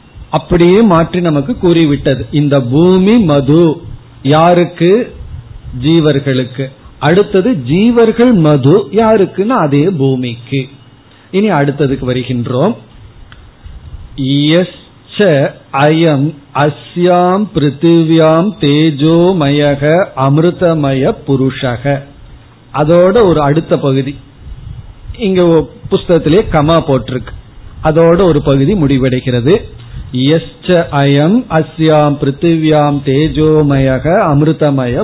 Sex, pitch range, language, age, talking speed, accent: male, 135-170 Hz, Tamil, 50-69, 60 wpm, native